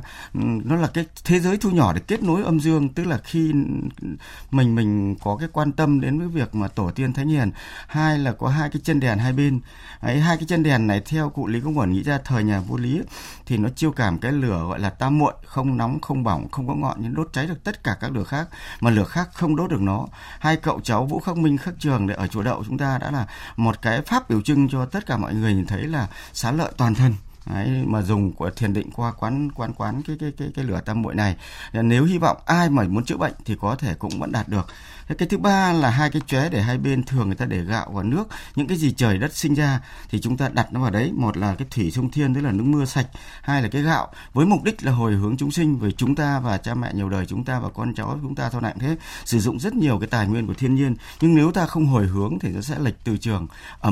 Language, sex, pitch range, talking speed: Vietnamese, male, 110-155 Hz, 275 wpm